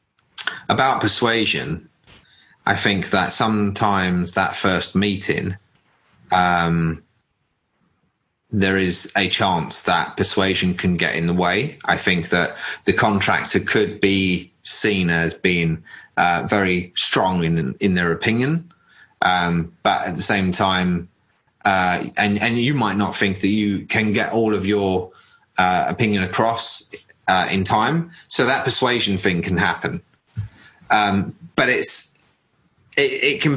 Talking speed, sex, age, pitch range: 135 wpm, male, 20-39, 90-110 Hz